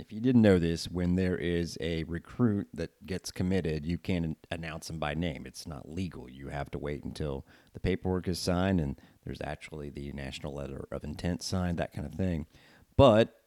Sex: male